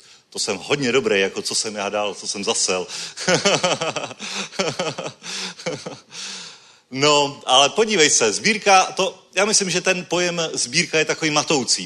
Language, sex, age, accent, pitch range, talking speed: Czech, male, 40-59, native, 130-155 Hz, 130 wpm